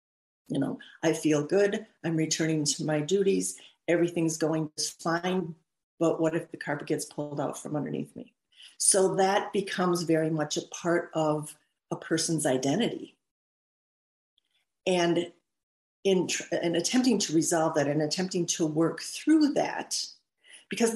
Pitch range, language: 160-195 Hz, English